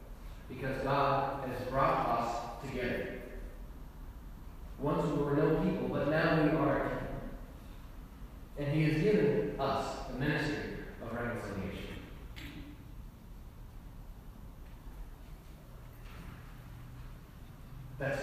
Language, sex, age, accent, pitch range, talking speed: English, male, 40-59, American, 135-195 Hz, 85 wpm